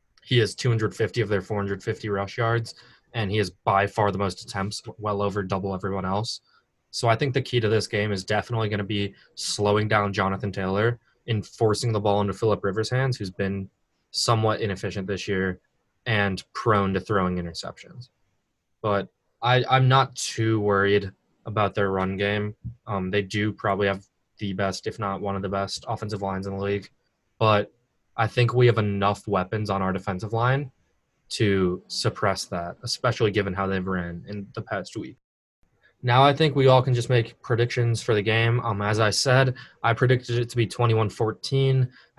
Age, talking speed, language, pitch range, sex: 20-39, 185 wpm, English, 100-120 Hz, male